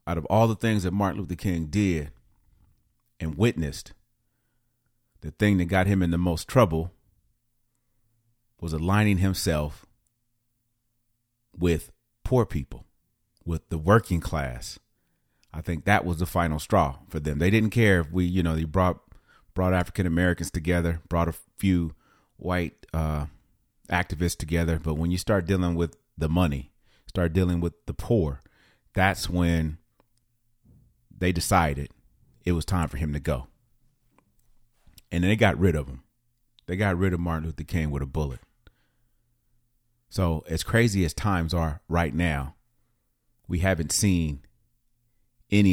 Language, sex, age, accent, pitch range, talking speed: English, male, 30-49, American, 80-115 Hz, 145 wpm